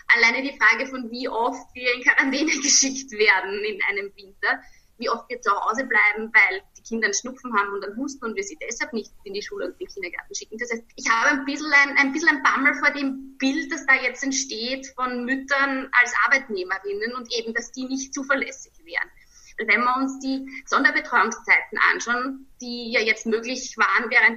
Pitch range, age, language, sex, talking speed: 225-280 Hz, 20-39, German, female, 205 wpm